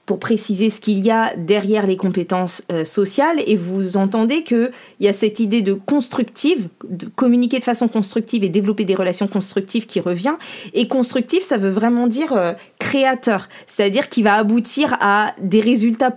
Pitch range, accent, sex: 200-265 Hz, French, female